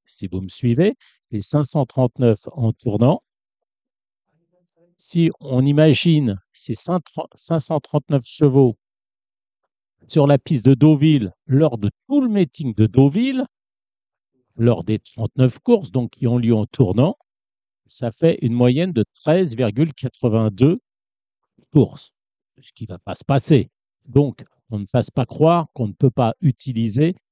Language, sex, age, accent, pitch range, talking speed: French, male, 50-69, French, 115-155 Hz, 130 wpm